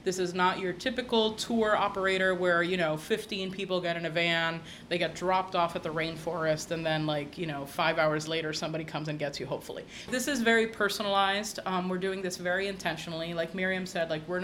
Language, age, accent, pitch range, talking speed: English, 30-49, American, 175-205 Hz, 215 wpm